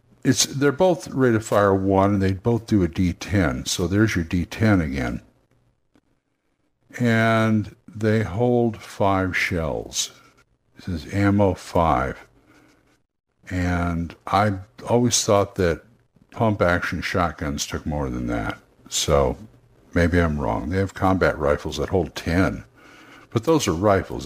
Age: 60-79